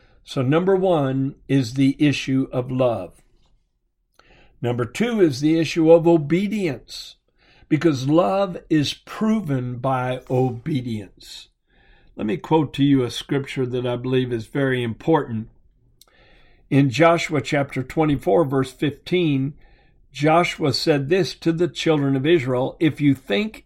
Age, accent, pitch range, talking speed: 60-79, American, 130-165 Hz, 130 wpm